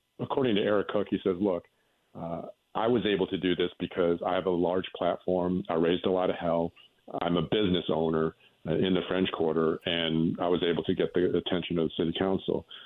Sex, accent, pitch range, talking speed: male, American, 85-95 Hz, 220 wpm